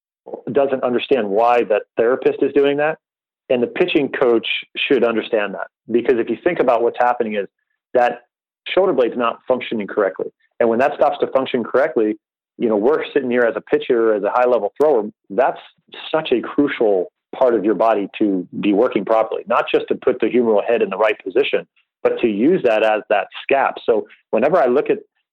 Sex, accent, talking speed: male, American, 200 wpm